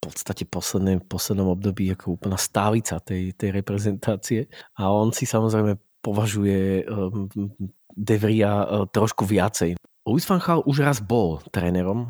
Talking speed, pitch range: 140 wpm, 95-110 Hz